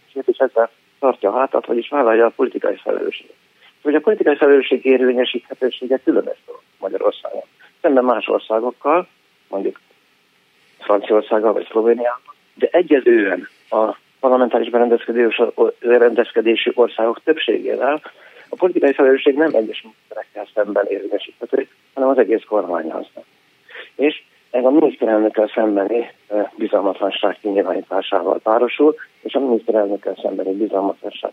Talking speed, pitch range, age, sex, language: 110 wpm, 110-150 Hz, 50-69, male, Hungarian